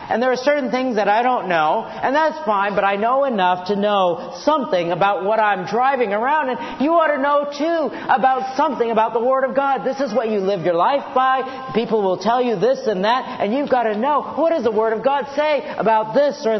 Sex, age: male, 50-69